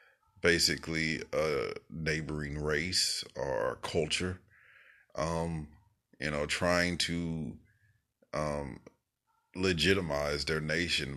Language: English